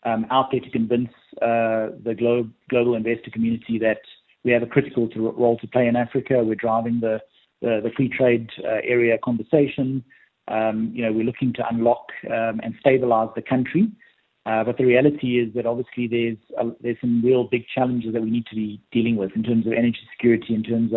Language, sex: English, male